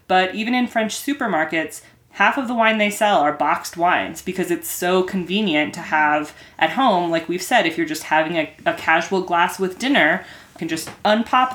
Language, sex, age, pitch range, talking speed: English, female, 20-39, 165-210 Hz, 205 wpm